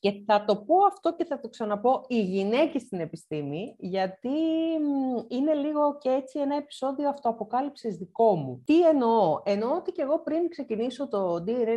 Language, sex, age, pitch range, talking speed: Greek, female, 30-49, 185-260 Hz, 170 wpm